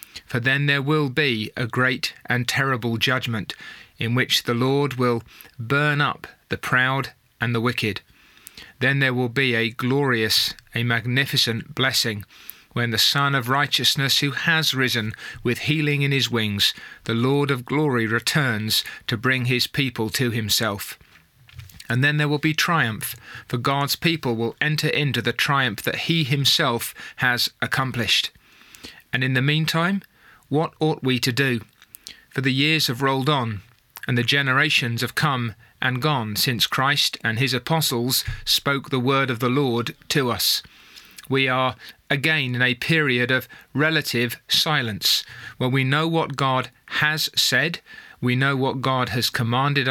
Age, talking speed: 30-49, 155 wpm